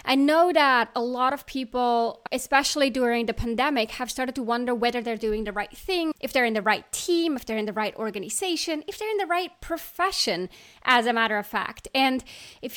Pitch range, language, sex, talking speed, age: 220-275 Hz, English, female, 215 wpm, 20-39